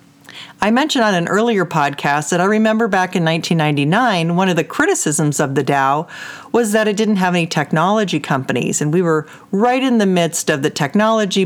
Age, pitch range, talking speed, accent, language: 40-59, 165-215 Hz, 195 wpm, American, English